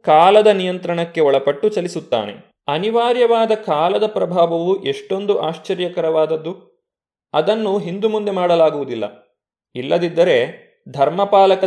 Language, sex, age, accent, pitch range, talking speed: Kannada, male, 20-39, native, 155-200 Hz, 75 wpm